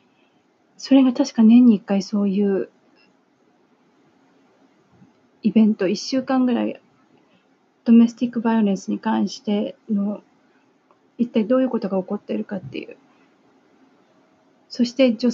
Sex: female